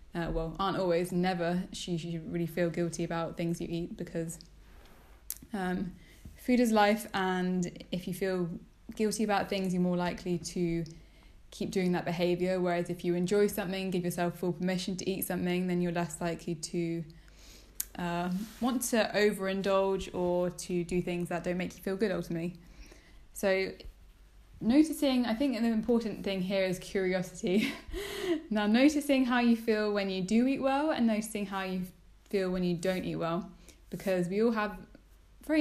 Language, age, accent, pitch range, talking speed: English, 10-29, British, 175-210 Hz, 170 wpm